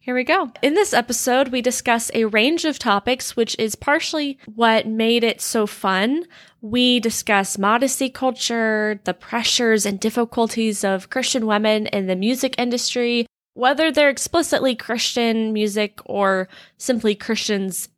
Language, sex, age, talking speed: English, female, 20-39, 145 wpm